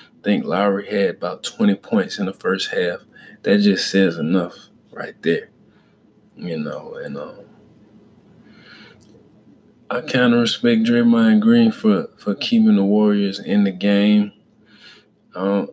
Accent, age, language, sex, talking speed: American, 20-39, English, male, 135 wpm